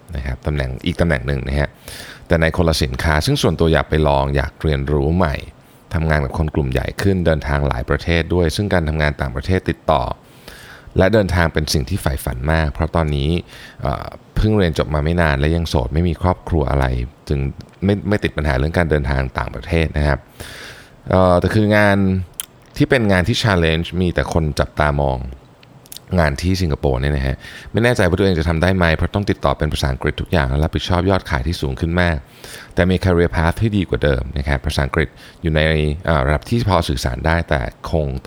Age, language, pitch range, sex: 20-39, Thai, 70-90 Hz, male